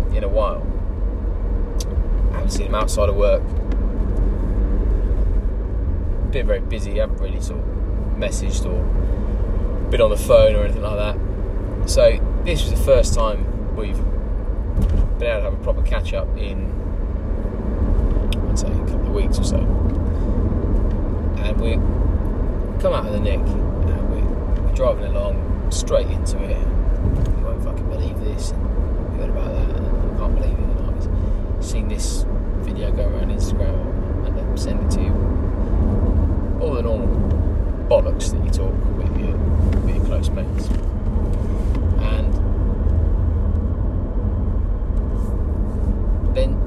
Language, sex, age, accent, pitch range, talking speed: English, male, 20-39, British, 80-95 Hz, 140 wpm